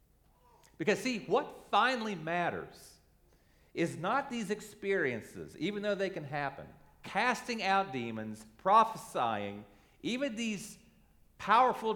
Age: 40-59